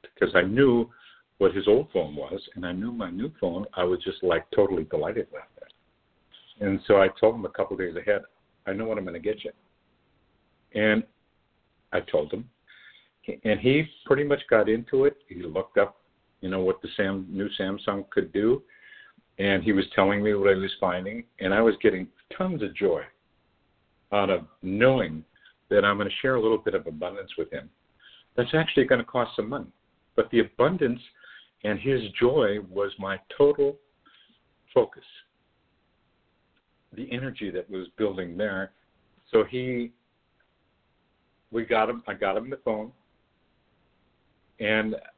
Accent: American